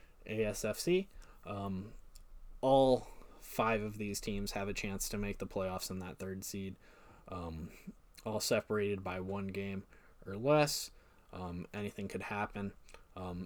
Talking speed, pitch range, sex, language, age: 140 wpm, 100-120 Hz, male, English, 20-39